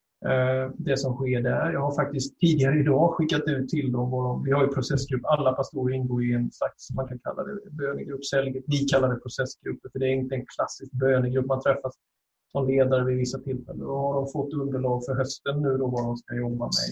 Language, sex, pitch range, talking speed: Swedish, male, 125-140 Hz, 220 wpm